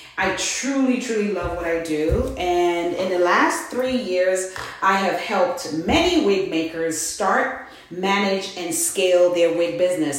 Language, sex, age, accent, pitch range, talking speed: English, female, 30-49, American, 165-235 Hz, 155 wpm